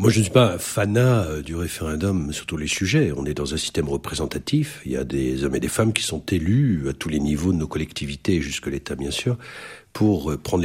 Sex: male